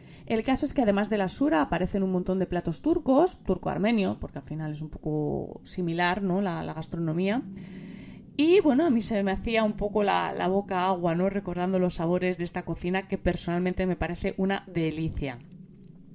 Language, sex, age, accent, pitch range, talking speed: Spanish, female, 20-39, Spanish, 180-240 Hz, 195 wpm